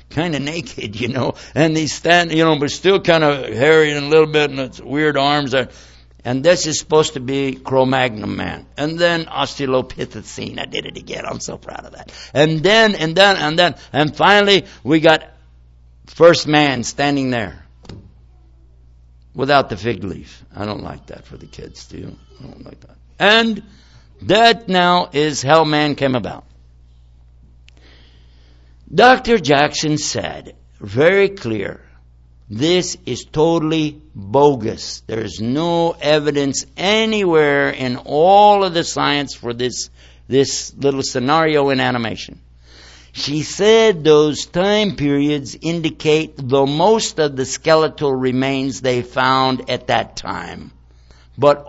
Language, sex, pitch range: English, male, 110-155 Hz